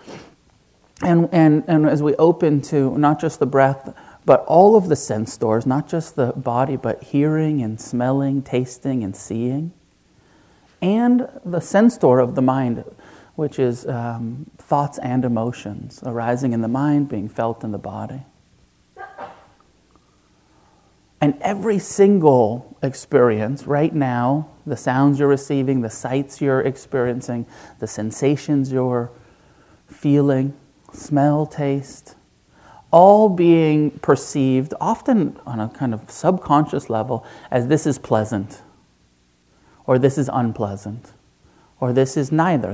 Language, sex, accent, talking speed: English, male, American, 130 wpm